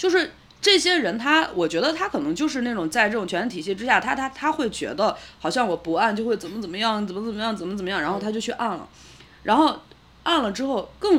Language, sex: Chinese, female